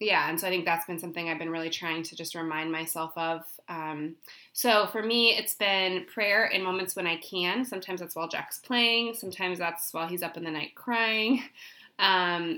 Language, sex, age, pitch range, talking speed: English, female, 20-39, 165-195 Hz, 210 wpm